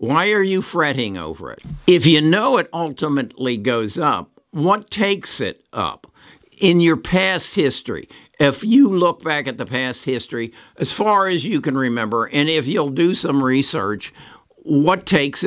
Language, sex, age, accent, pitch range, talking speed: English, male, 60-79, American, 135-175 Hz, 165 wpm